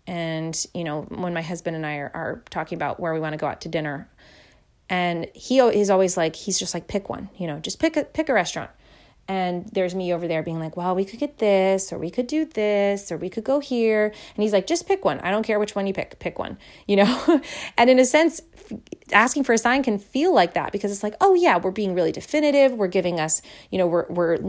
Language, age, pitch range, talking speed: English, 30-49, 175-230 Hz, 255 wpm